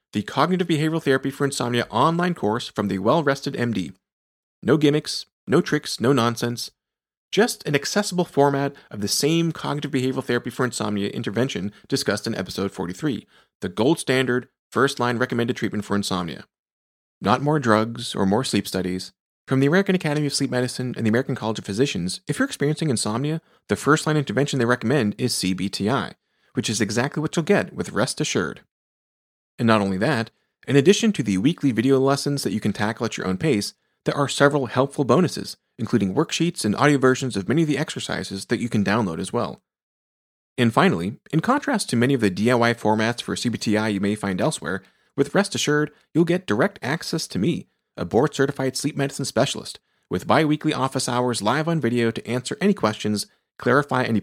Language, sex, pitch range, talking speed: English, male, 110-150 Hz, 185 wpm